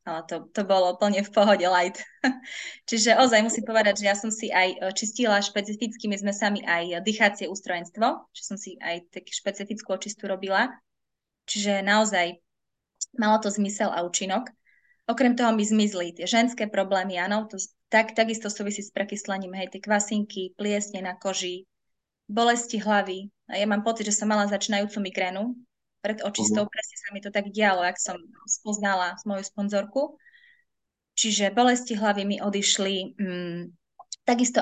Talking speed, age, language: 160 wpm, 20-39, Slovak